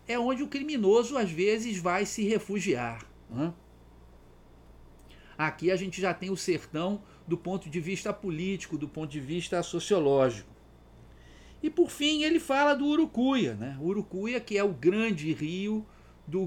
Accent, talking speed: Brazilian, 155 wpm